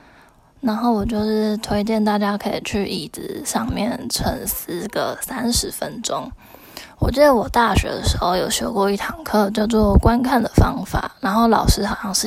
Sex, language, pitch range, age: female, Chinese, 205-230 Hz, 10-29